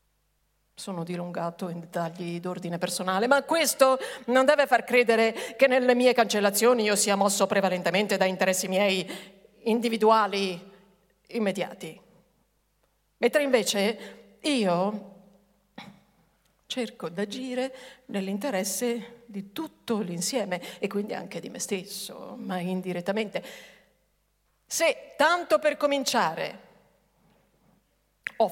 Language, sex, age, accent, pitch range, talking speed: Italian, female, 50-69, native, 195-250 Hz, 100 wpm